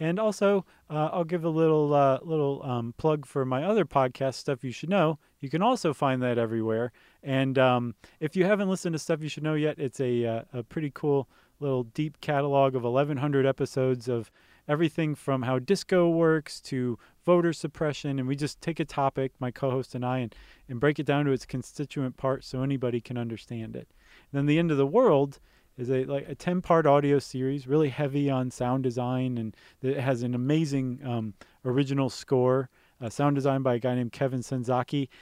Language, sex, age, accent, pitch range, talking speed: English, male, 20-39, American, 125-155 Hz, 200 wpm